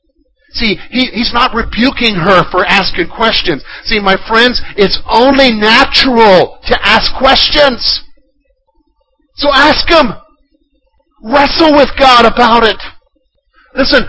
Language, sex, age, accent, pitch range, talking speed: English, male, 50-69, American, 205-280 Hz, 115 wpm